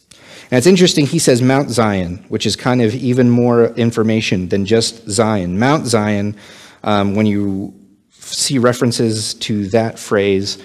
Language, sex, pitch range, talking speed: English, male, 95-120 Hz, 150 wpm